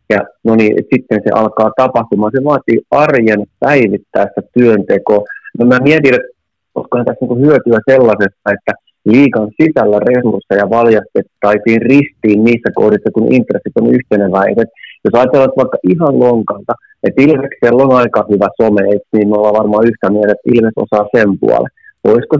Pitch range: 105-130 Hz